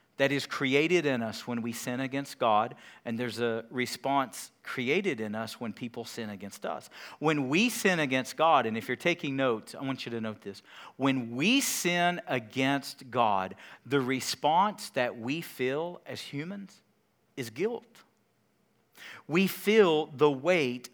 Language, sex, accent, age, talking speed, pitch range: English, male, American, 50-69, 160 wpm, 125-175 Hz